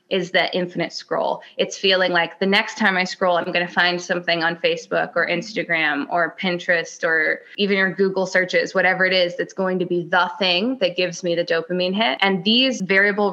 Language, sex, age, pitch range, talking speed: English, female, 20-39, 175-200 Hz, 205 wpm